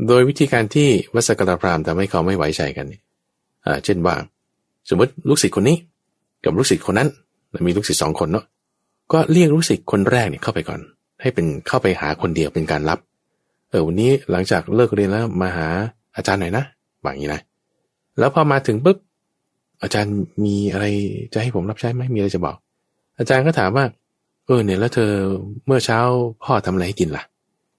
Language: English